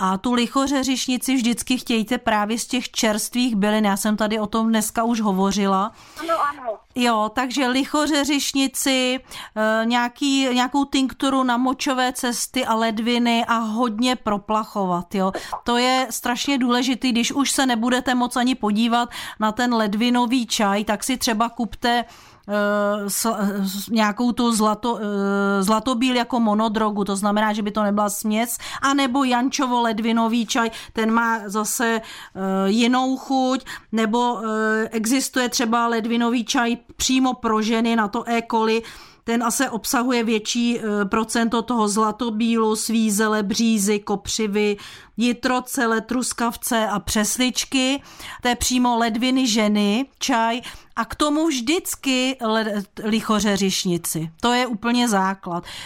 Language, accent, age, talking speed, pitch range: Czech, native, 40-59, 125 wpm, 215-250 Hz